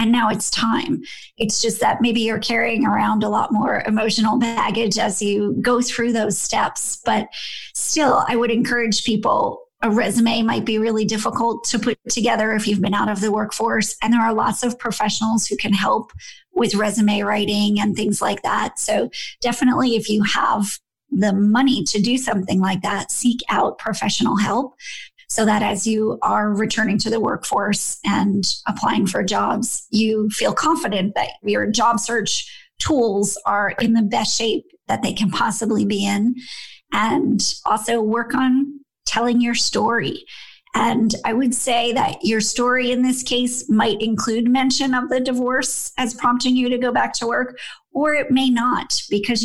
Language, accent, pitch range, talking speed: English, American, 210-245 Hz, 175 wpm